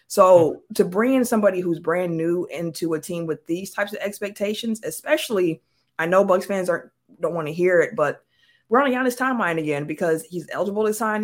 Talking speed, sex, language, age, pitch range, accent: 205 wpm, female, English, 20-39, 155-195 Hz, American